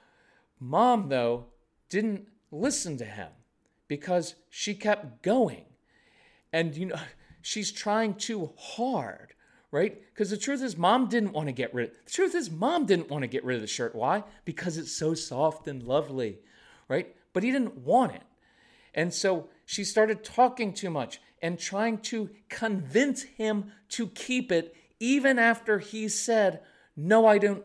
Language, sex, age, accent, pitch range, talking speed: English, male, 40-59, American, 190-255 Hz, 165 wpm